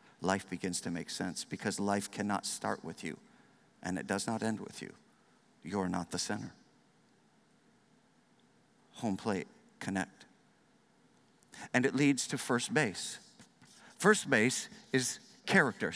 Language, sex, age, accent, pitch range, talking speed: English, male, 50-69, American, 180-250 Hz, 130 wpm